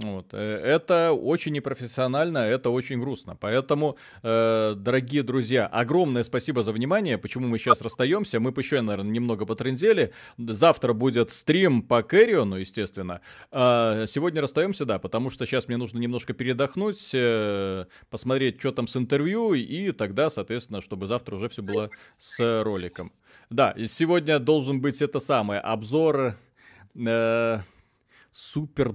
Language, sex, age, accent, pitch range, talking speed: Russian, male, 30-49, native, 115-140 Hz, 135 wpm